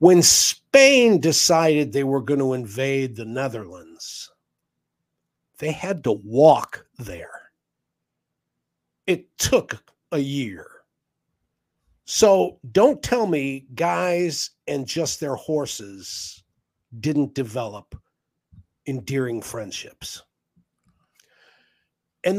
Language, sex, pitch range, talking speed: English, male, 125-190 Hz, 90 wpm